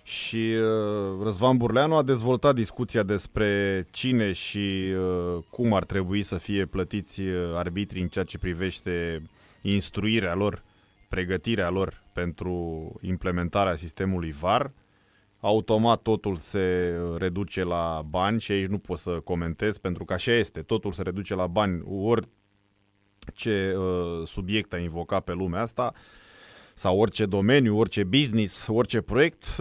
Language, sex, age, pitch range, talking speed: Romanian, male, 20-39, 90-115 Hz, 130 wpm